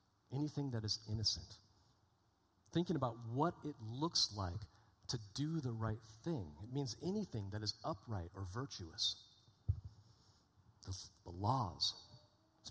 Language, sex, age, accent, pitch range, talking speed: English, male, 40-59, American, 100-130 Hz, 130 wpm